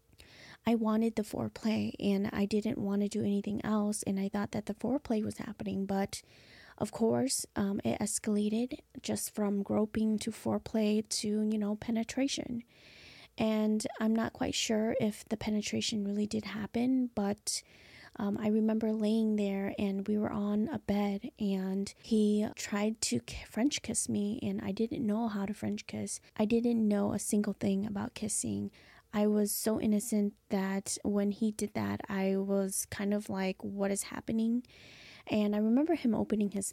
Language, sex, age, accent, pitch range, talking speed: English, female, 20-39, American, 200-225 Hz, 170 wpm